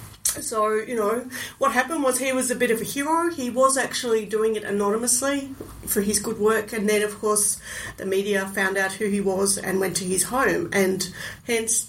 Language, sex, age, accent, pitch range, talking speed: English, female, 40-59, Australian, 200-250 Hz, 205 wpm